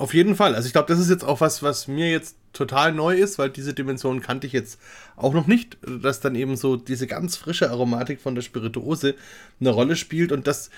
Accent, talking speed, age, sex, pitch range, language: German, 235 wpm, 30-49, male, 125-155 Hz, German